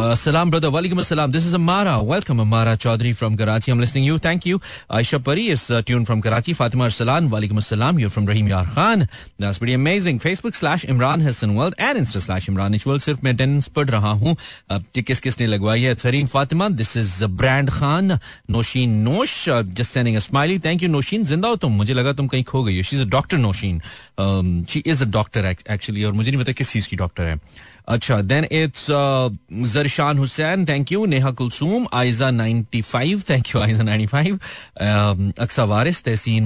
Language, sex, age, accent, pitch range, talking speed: Hindi, male, 30-49, native, 110-160 Hz, 205 wpm